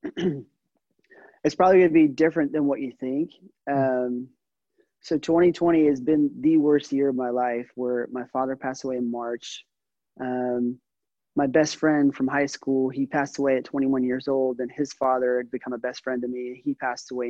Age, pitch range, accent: 30-49, 125-140 Hz, American